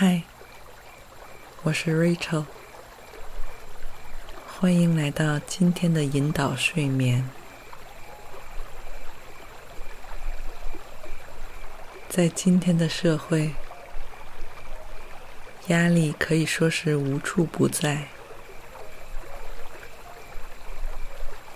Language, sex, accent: Chinese, female, native